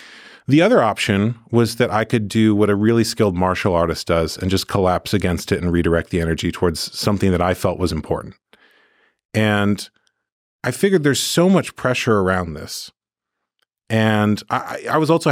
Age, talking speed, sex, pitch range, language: 40-59, 175 wpm, male, 90-120 Hz, English